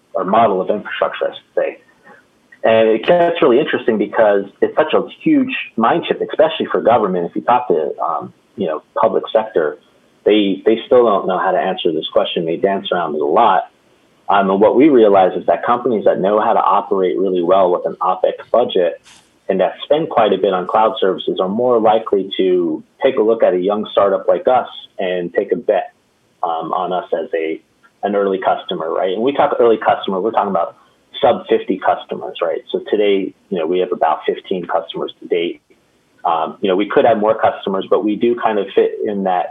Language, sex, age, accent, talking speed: English, male, 40-59, American, 215 wpm